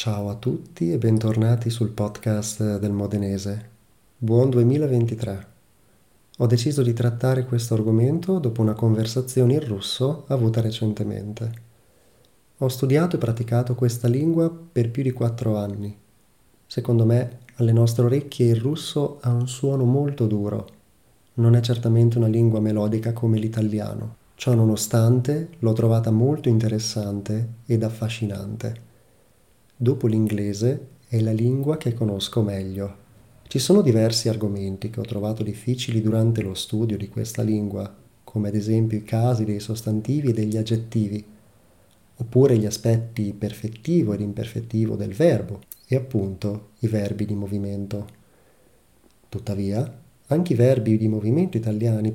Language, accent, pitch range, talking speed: Italian, native, 105-125 Hz, 130 wpm